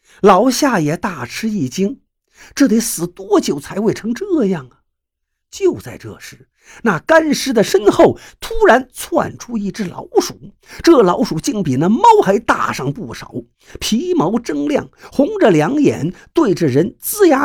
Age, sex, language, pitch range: 50-69, male, Chinese, 195-330 Hz